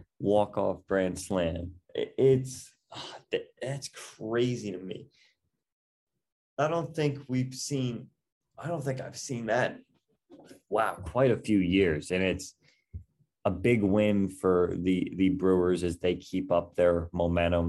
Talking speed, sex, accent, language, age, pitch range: 135 wpm, male, American, English, 30-49, 85-100 Hz